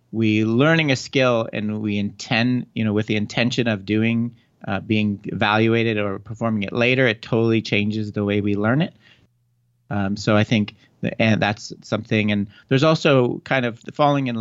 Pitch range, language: 100-120 Hz, English